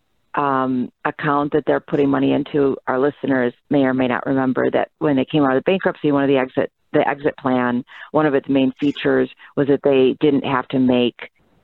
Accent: American